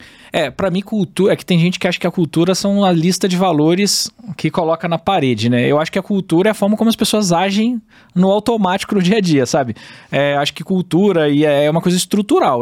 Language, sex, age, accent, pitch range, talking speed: Portuguese, male, 20-39, Brazilian, 145-200 Hz, 235 wpm